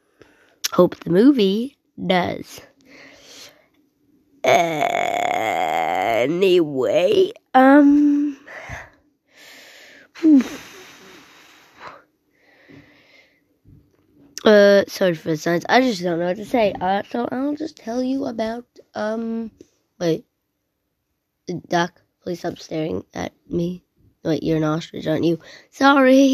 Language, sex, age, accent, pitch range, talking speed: English, female, 20-39, American, 205-295 Hz, 90 wpm